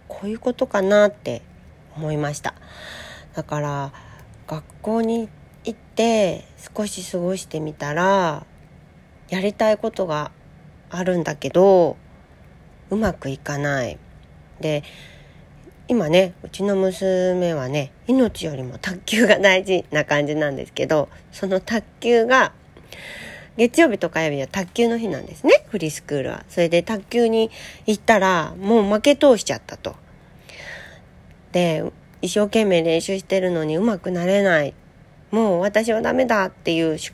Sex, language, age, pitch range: female, Japanese, 40-59, 155-215 Hz